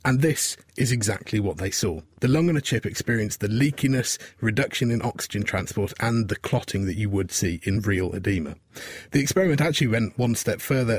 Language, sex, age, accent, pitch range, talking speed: English, male, 30-49, British, 105-135 Hz, 195 wpm